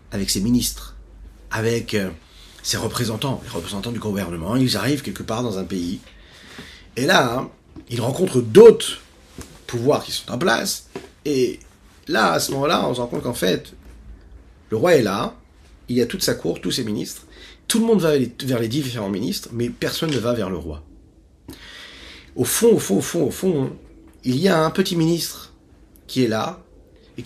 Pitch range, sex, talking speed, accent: 100-145 Hz, male, 185 wpm, French